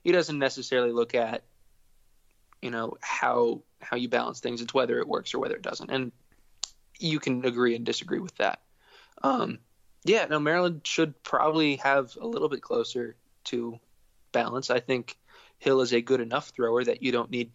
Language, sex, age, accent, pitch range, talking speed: English, male, 20-39, American, 120-145 Hz, 180 wpm